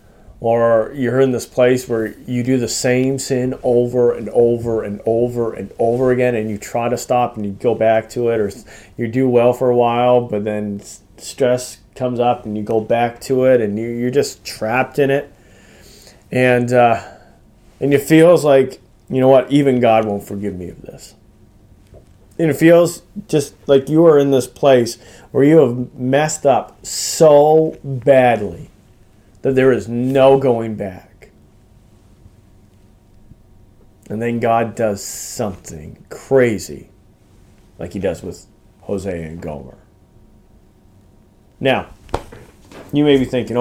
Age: 30-49